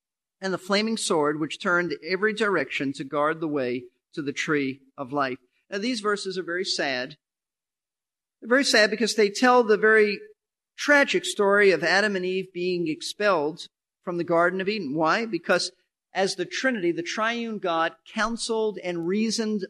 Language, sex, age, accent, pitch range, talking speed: English, male, 50-69, American, 155-210 Hz, 170 wpm